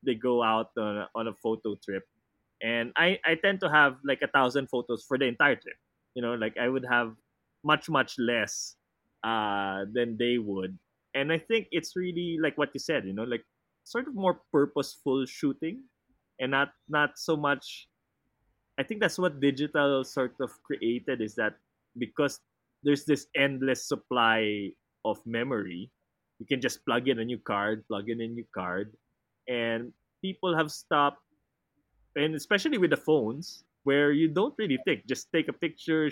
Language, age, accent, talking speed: English, 20-39, Filipino, 175 wpm